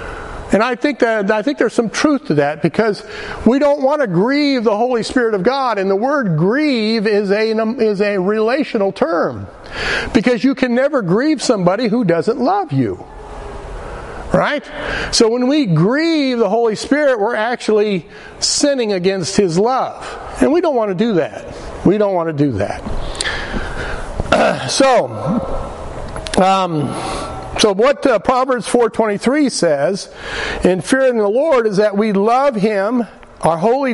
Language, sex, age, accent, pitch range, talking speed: English, male, 60-79, American, 185-250 Hz, 155 wpm